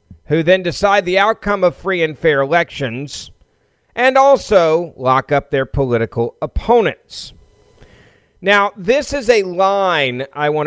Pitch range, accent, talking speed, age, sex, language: 130-170 Hz, American, 135 wpm, 40-59, male, English